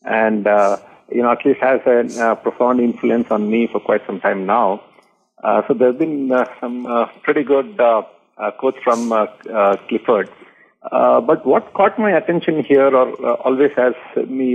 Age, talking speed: 50-69, 190 wpm